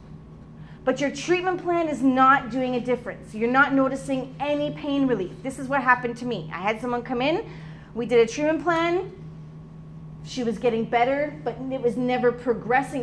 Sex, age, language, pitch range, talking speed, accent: female, 30-49, English, 185-260 Hz, 185 wpm, American